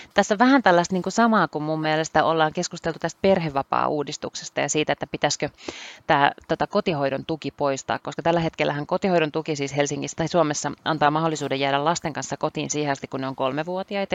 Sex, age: female, 30-49